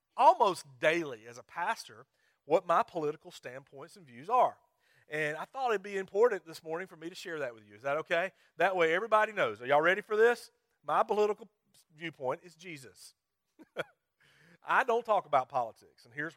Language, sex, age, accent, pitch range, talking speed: English, male, 40-59, American, 150-205 Hz, 195 wpm